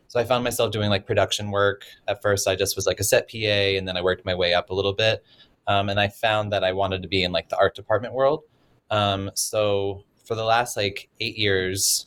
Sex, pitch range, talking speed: male, 95-115 Hz, 250 wpm